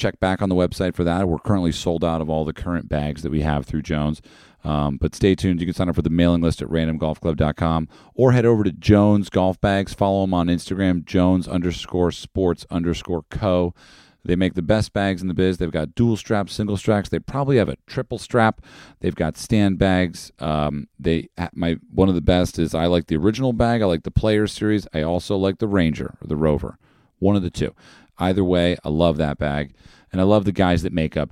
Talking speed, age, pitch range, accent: 230 wpm, 40-59, 80-95 Hz, American